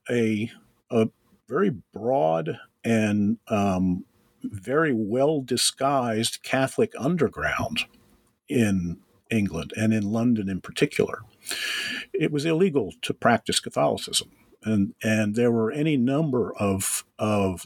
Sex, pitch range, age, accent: male, 105-135 Hz, 50-69, American